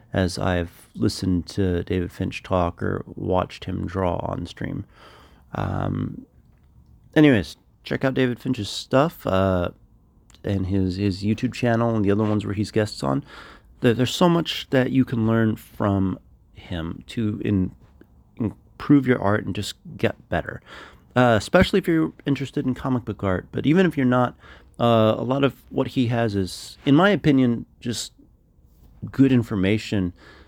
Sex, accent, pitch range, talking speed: male, American, 90-120 Hz, 160 wpm